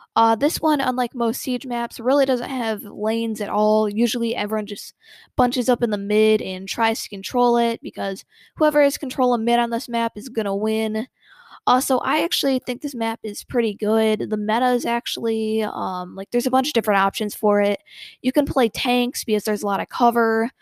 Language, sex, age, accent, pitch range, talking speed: English, female, 10-29, American, 210-250 Hz, 210 wpm